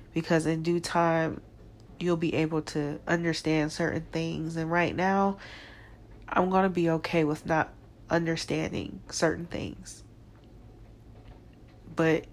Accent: American